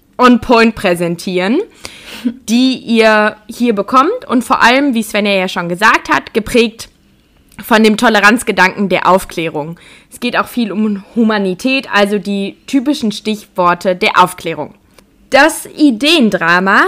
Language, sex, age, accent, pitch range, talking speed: German, female, 20-39, German, 200-260 Hz, 130 wpm